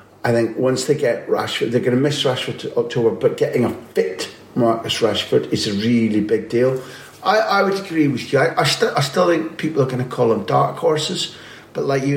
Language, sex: English, male